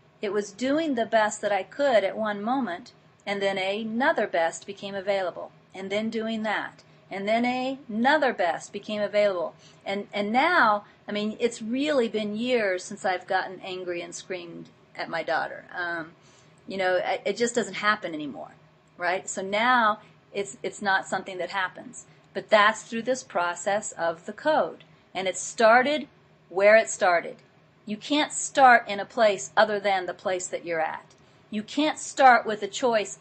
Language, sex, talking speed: English, female, 170 wpm